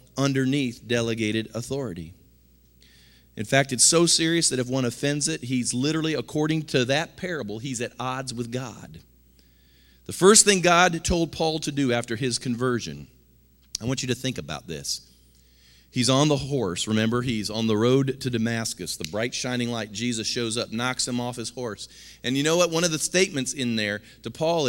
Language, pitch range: English, 105-135 Hz